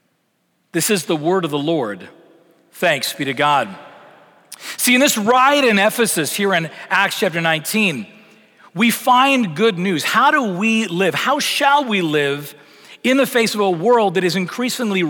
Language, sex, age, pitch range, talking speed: English, male, 40-59, 160-225 Hz, 170 wpm